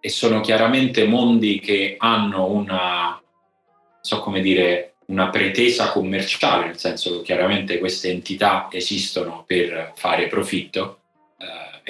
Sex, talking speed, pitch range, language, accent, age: male, 120 wpm, 90-110 Hz, Italian, native, 30-49